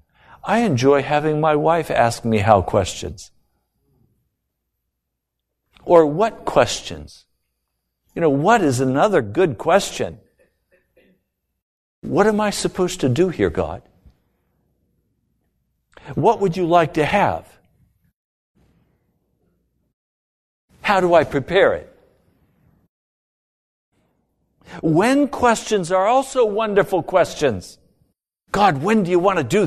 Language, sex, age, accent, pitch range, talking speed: English, male, 60-79, American, 125-200 Hz, 105 wpm